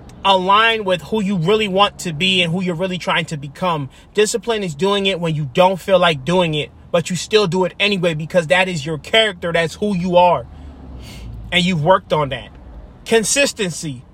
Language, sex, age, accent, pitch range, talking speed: English, male, 30-49, American, 155-195 Hz, 200 wpm